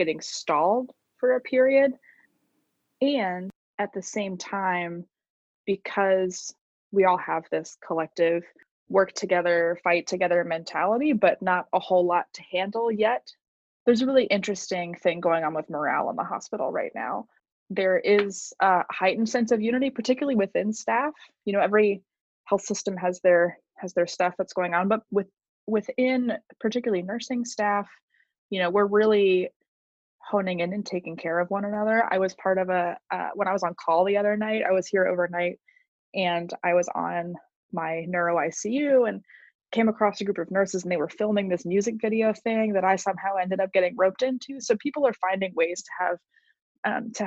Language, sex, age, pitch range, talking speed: English, female, 20-39, 175-220 Hz, 180 wpm